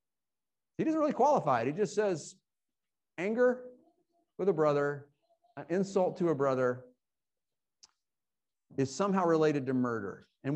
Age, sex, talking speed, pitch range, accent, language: 50-69, male, 130 wpm, 135-210 Hz, American, English